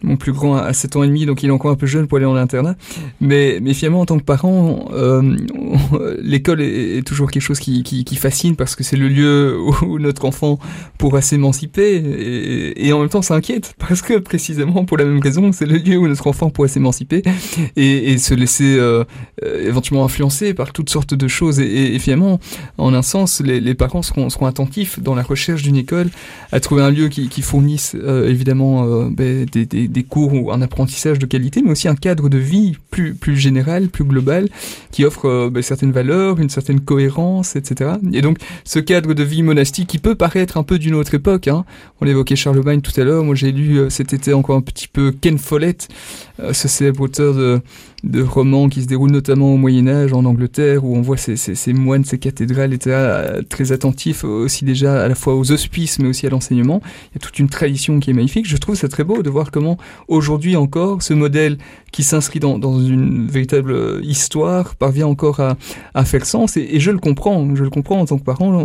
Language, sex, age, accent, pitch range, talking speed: French, male, 30-49, French, 135-160 Hz, 220 wpm